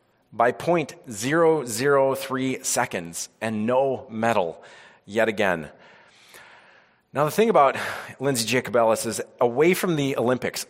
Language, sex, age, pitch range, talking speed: English, male, 30-49, 120-155 Hz, 105 wpm